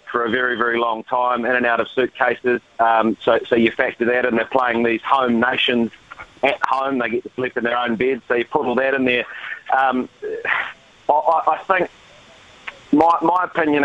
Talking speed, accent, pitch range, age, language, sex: 205 wpm, Australian, 115-130 Hz, 30-49, English, male